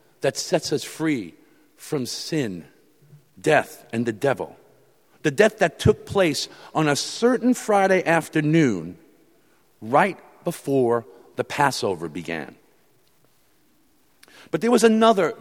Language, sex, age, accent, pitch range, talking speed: English, male, 50-69, American, 125-175 Hz, 115 wpm